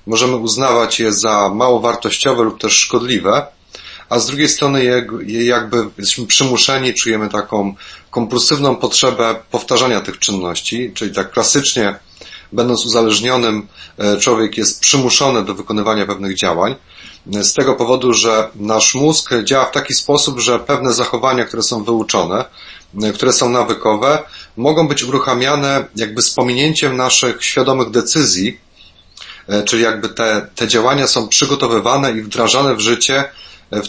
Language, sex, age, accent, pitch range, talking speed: Polish, male, 30-49, native, 110-135 Hz, 135 wpm